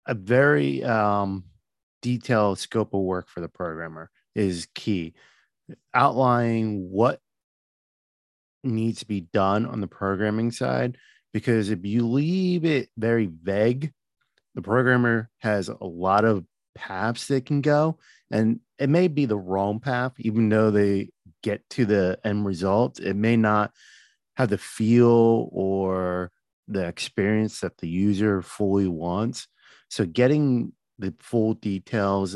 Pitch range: 95-115 Hz